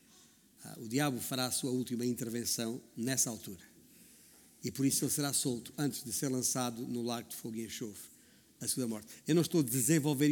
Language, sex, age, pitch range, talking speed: Portuguese, male, 50-69, 145-190 Hz, 190 wpm